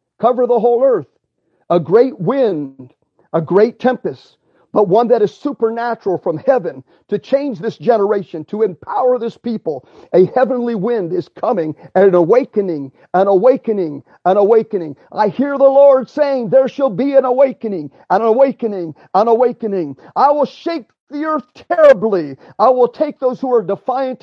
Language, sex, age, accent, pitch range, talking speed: English, male, 50-69, American, 195-250 Hz, 160 wpm